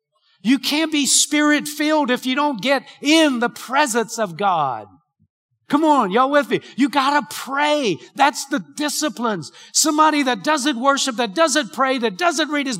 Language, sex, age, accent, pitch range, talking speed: English, male, 50-69, American, 210-290 Hz, 170 wpm